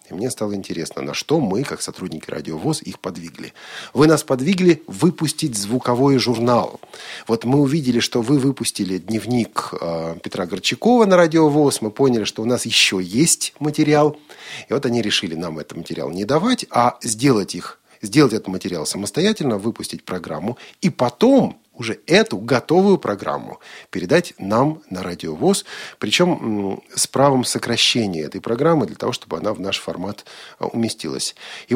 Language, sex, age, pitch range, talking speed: Russian, male, 40-59, 95-145 Hz, 155 wpm